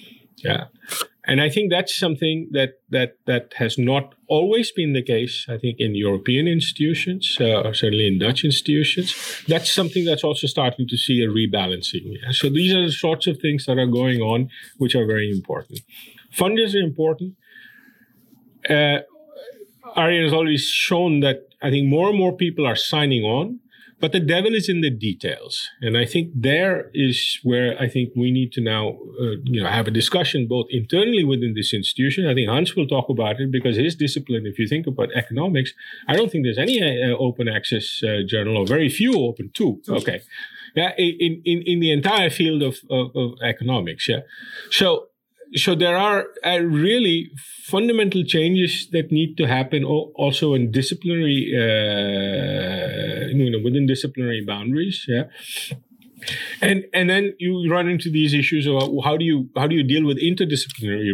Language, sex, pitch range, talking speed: Dutch, male, 125-175 Hz, 180 wpm